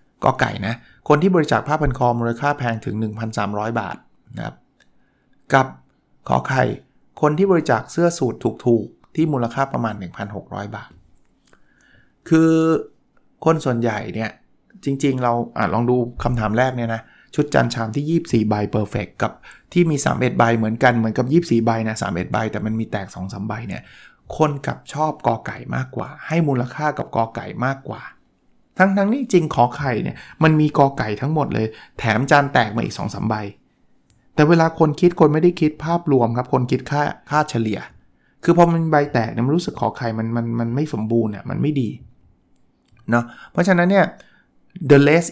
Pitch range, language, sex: 115-150 Hz, Thai, male